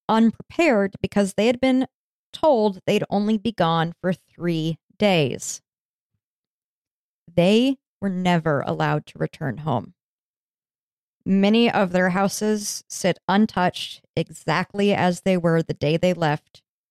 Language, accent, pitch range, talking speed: English, American, 170-210 Hz, 120 wpm